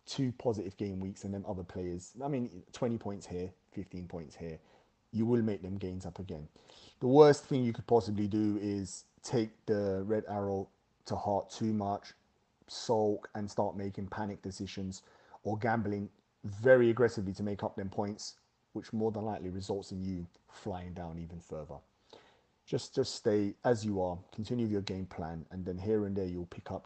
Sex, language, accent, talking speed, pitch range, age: male, English, British, 185 wpm, 95-115 Hz, 30-49